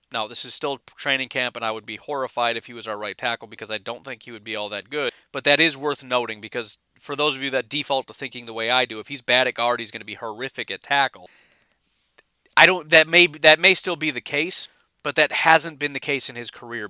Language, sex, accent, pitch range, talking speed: English, male, American, 110-130 Hz, 270 wpm